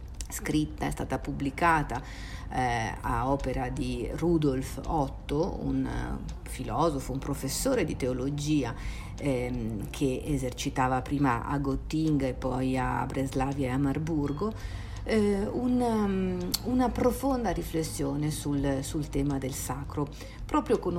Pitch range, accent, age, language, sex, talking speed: 130-155 Hz, native, 50-69, Italian, female, 115 wpm